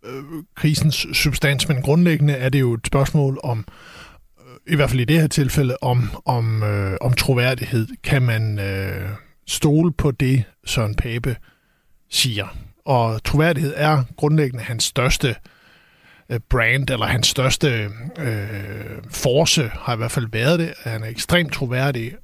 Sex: male